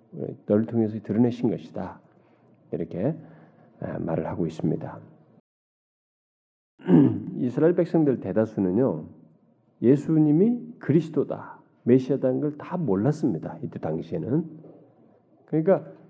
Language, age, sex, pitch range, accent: Korean, 40-59, male, 90-150 Hz, native